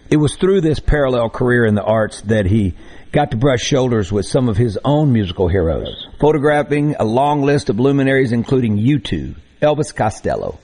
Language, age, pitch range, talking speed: English, 50-69, 110-150 Hz, 180 wpm